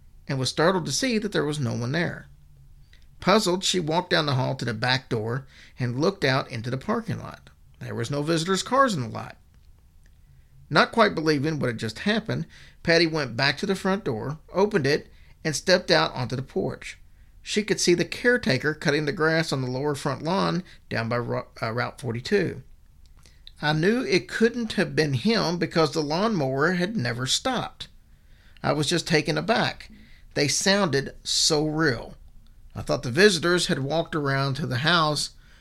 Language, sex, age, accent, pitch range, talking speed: English, male, 50-69, American, 130-175 Hz, 180 wpm